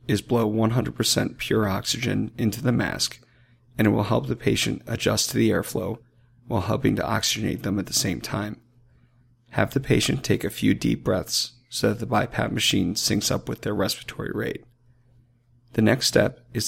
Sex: male